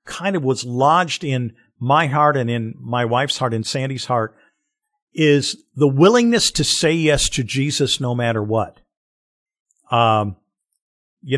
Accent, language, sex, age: American, English, male, 50-69